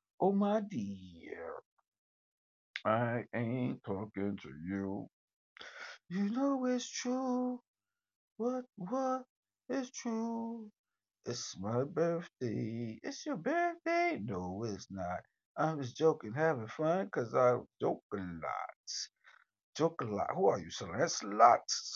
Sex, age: male, 60-79